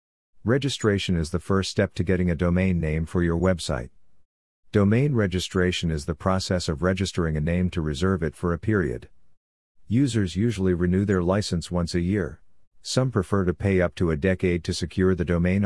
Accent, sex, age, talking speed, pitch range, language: American, male, 50-69, 185 wpm, 85-100 Hz, English